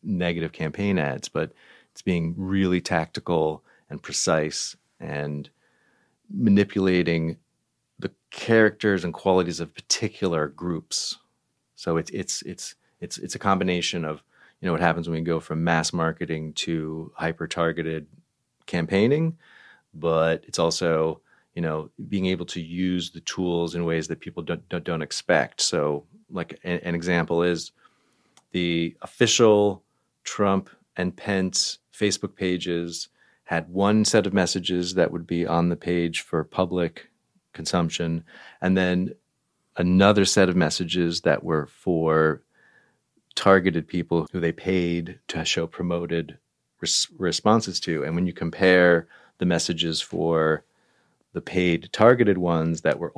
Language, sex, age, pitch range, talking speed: English, male, 30-49, 80-90 Hz, 135 wpm